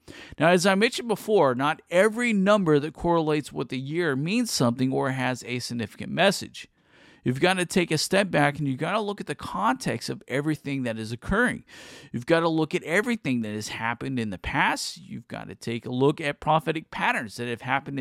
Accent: American